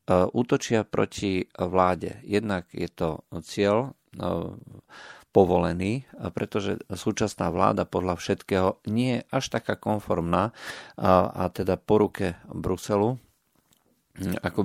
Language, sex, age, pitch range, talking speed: Slovak, male, 40-59, 85-105 Hz, 95 wpm